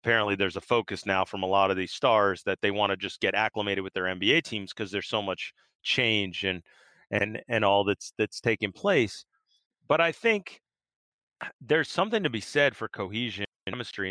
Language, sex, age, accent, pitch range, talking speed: English, male, 40-59, American, 105-120 Hz, 195 wpm